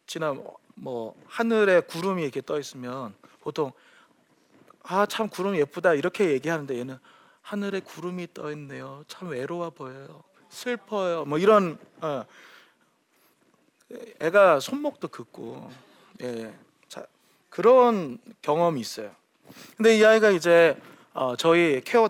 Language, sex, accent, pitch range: Korean, male, native, 140-210 Hz